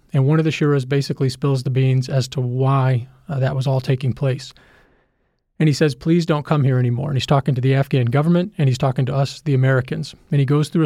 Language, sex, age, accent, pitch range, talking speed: English, male, 40-59, American, 135-155 Hz, 245 wpm